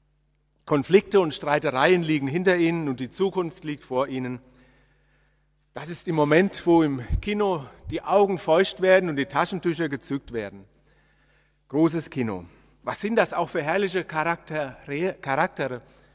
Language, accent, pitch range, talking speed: German, German, 140-175 Hz, 140 wpm